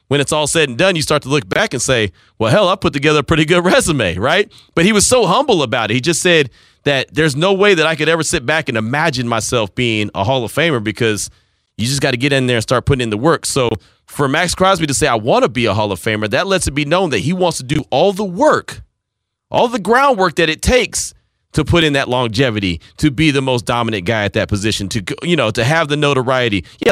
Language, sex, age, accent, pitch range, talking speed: English, male, 30-49, American, 125-200 Hz, 265 wpm